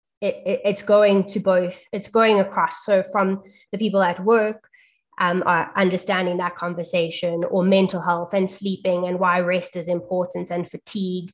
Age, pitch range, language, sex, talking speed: 20-39, 180-205 Hz, English, female, 155 wpm